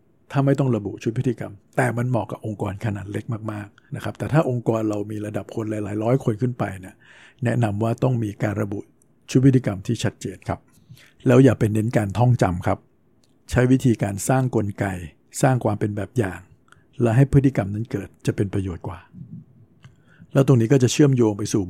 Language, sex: Thai, male